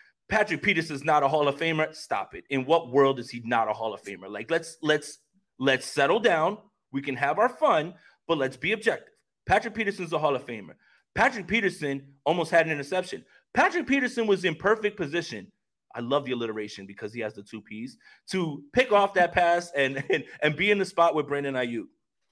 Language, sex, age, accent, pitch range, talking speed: English, male, 30-49, American, 135-200 Hz, 210 wpm